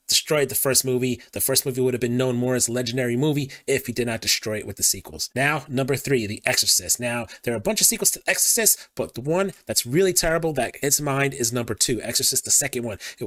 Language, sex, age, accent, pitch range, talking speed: English, male, 30-49, American, 115-140 Hz, 250 wpm